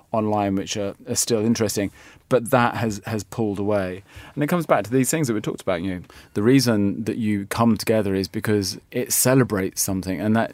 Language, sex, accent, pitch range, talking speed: English, male, British, 100-125 Hz, 210 wpm